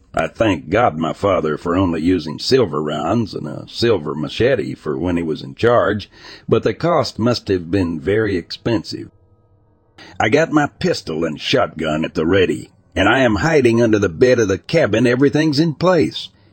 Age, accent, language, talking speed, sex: 60-79, American, English, 180 wpm, male